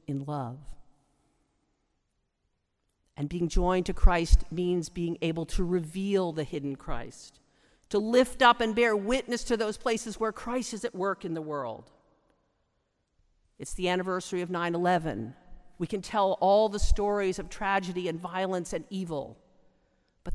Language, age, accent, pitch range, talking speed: English, 50-69, American, 160-210 Hz, 145 wpm